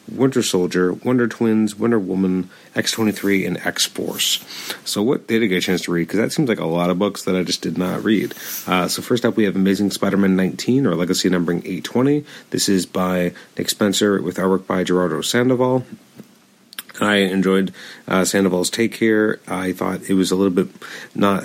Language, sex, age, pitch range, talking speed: English, male, 30-49, 90-100 Hz, 195 wpm